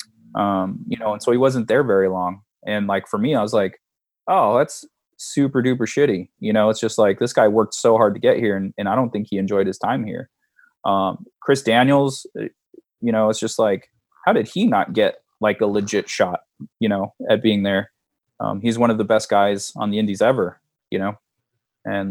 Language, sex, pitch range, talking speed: English, male, 100-125 Hz, 220 wpm